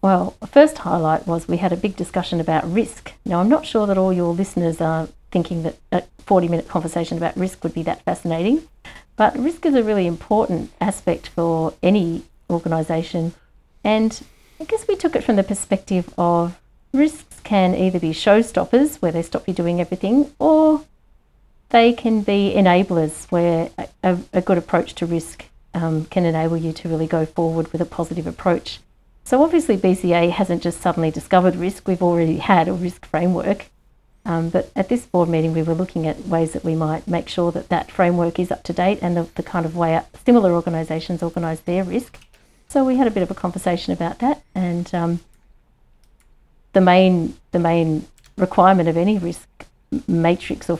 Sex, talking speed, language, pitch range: female, 185 wpm, English, 170-195 Hz